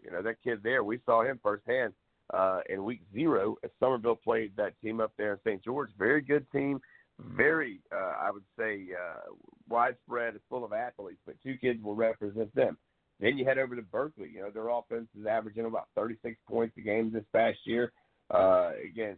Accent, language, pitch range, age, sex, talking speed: American, English, 110-125 Hz, 50-69, male, 205 wpm